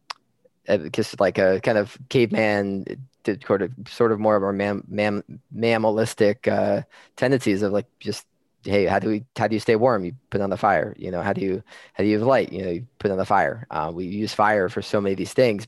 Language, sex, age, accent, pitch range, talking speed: English, male, 20-39, American, 95-110 Hz, 245 wpm